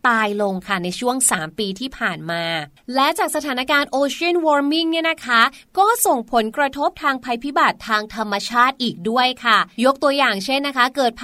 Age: 20-39